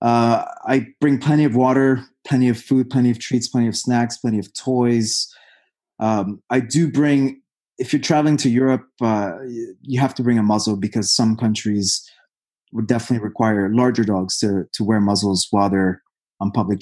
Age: 20-39